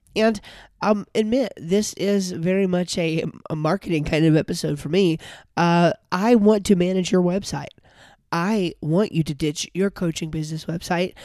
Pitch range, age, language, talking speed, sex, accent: 145-180 Hz, 20-39, English, 165 wpm, male, American